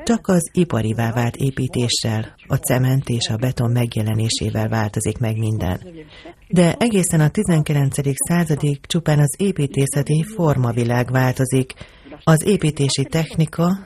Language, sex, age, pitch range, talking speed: Hungarian, female, 30-49, 120-160 Hz, 115 wpm